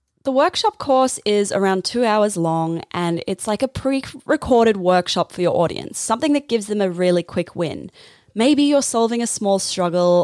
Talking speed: 180 wpm